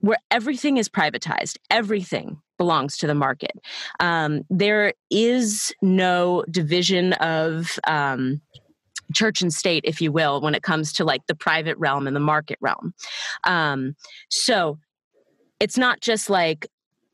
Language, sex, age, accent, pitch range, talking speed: English, female, 30-49, American, 155-210 Hz, 140 wpm